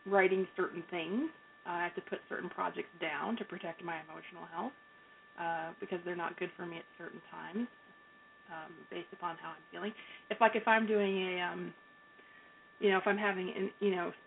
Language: English